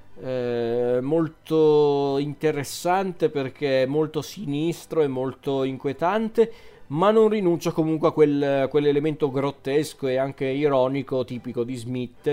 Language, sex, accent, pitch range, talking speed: Italian, male, native, 120-160 Hz, 115 wpm